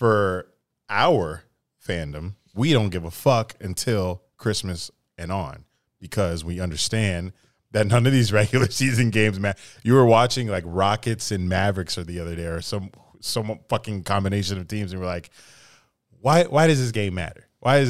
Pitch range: 90-120 Hz